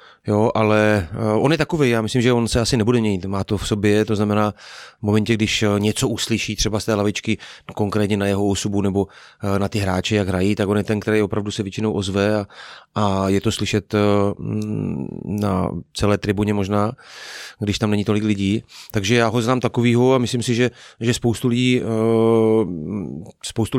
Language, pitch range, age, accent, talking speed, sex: Czech, 105-120 Hz, 30-49, native, 185 wpm, male